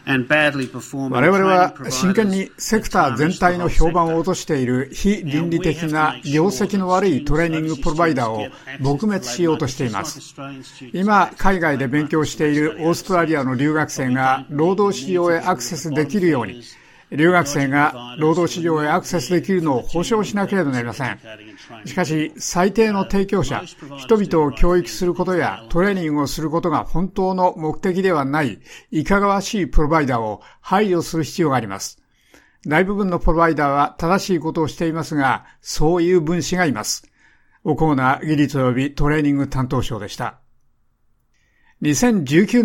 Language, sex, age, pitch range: Japanese, male, 60-79, 145-185 Hz